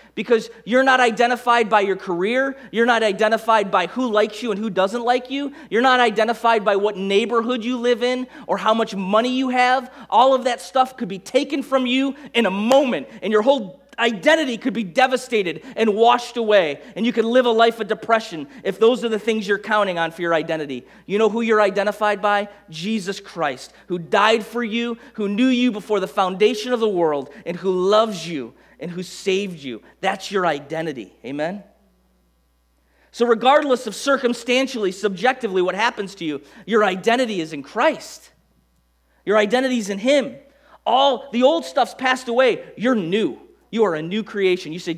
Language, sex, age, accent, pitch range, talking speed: English, male, 30-49, American, 190-245 Hz, 190 wpm